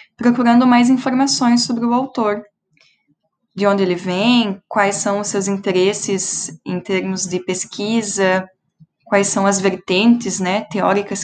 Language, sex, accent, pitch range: Portuguese, female, Brazilian, 195-240 Hz